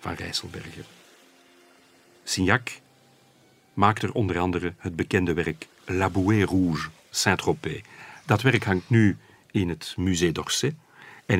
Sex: male